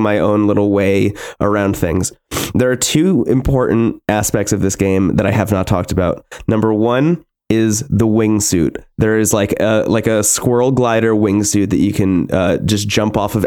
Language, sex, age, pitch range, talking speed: English, male, 20-39, 105-130 Hz, 185 wpm